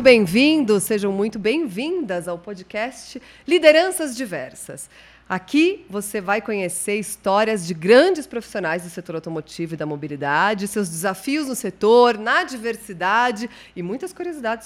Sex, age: female, 40-59